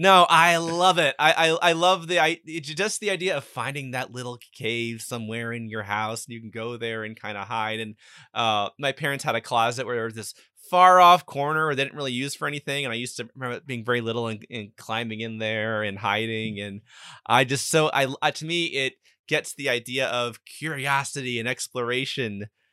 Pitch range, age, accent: 110-140 Hz, 30-49, American